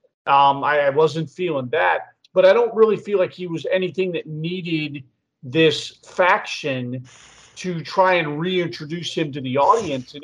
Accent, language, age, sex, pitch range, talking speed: American, English, 40-59, male, 150-200 Hz, 165 wpm